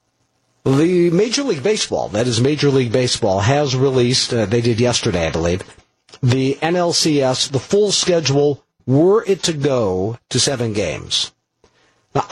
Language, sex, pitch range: English, male, 115-155 Hz